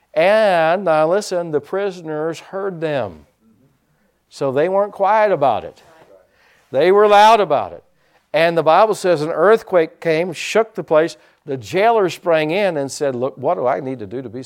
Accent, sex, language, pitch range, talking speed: American, male, English, 135-185 Hz, 180 wpm